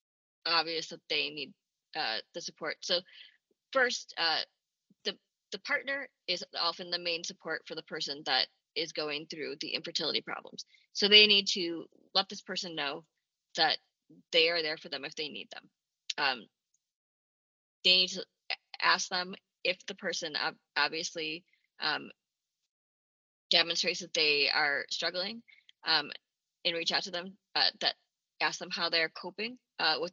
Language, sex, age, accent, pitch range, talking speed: English, female, 20-39, American, 165-205 Hz, 155 wpm